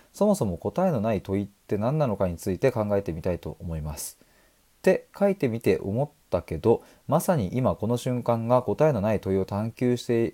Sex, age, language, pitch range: male, 20-39, Japanese, 95-130 Hz